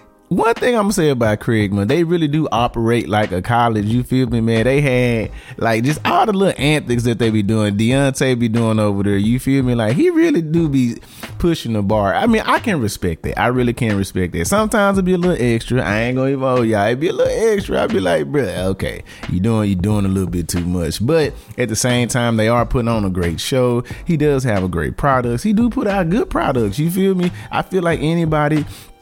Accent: American